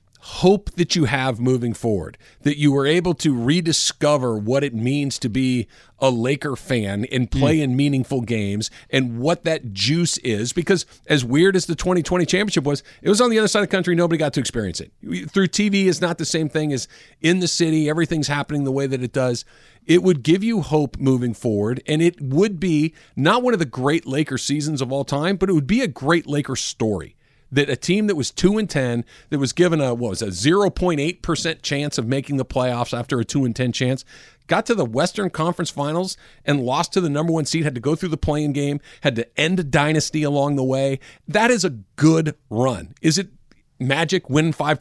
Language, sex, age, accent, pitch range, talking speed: English, male, 40-59, American, 130-170 Hz, 225 wpm